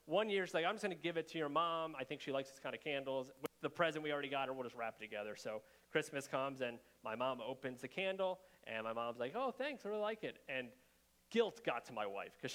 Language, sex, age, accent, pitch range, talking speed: English, male, 30-49, American, 130-190 Hz, 280 wpm